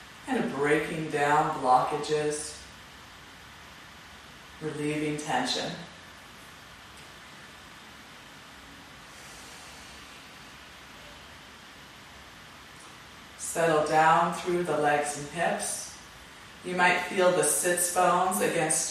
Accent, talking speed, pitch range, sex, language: American, 65 wpm, 145-175 Hz, female, English